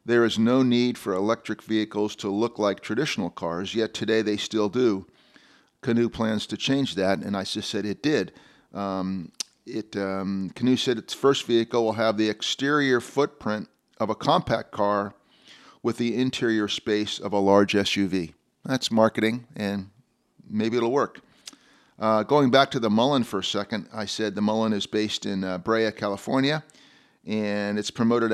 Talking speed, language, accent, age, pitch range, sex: 170 wpm, English, American, 40-59, 105-120 Hz, male